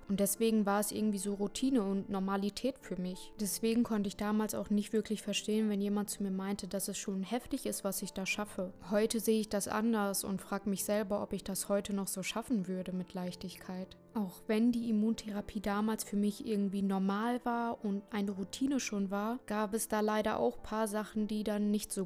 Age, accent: 20-39, German